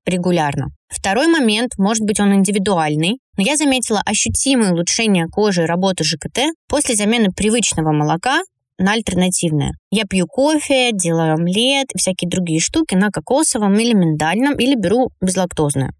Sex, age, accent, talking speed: female, 20-39, native, 140 wpm